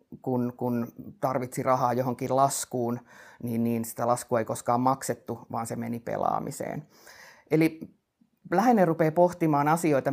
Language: Finnish